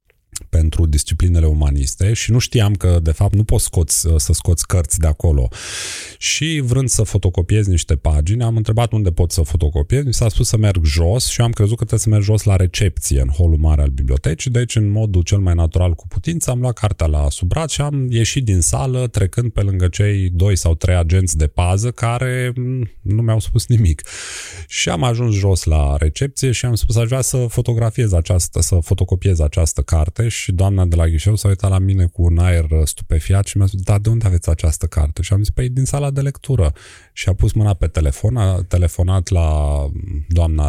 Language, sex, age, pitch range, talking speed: Romanian, male, 30-49, 85-115 Hz, 210 wpm